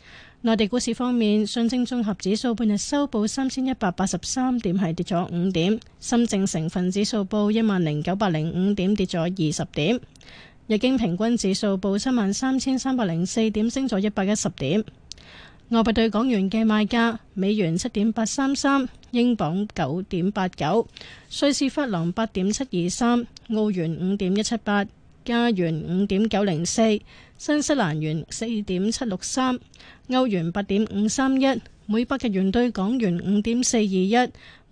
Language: Chinese